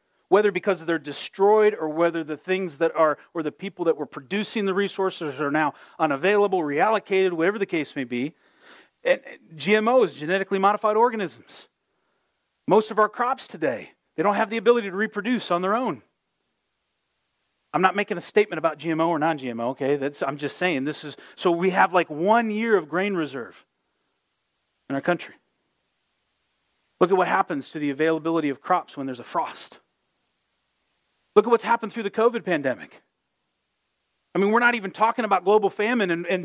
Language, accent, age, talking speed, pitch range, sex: English, American, 40-59, 175 wpm, 155-210 Hz, male